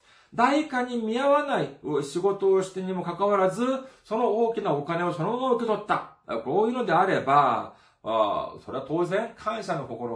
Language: Japanese